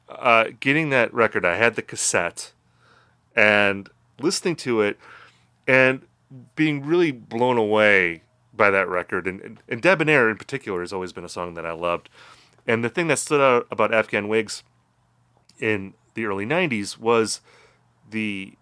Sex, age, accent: male, 30-49, American